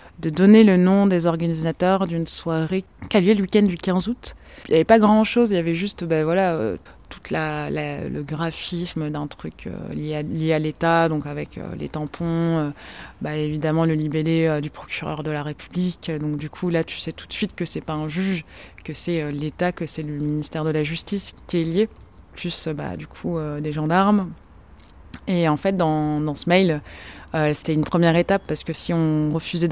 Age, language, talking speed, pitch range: 20-39, French, 220 wpm, 155-180 Hz